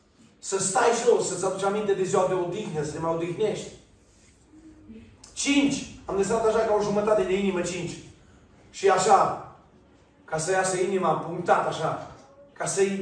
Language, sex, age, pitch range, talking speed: Romanian, male, 40-59, 165-220 Hz, 155 wpm